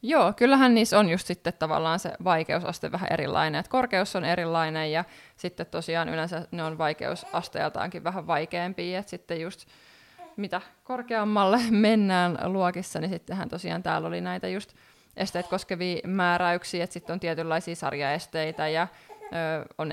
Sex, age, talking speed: female, 20-39, 150 wpm